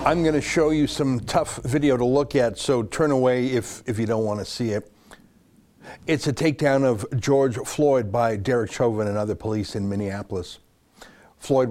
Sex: male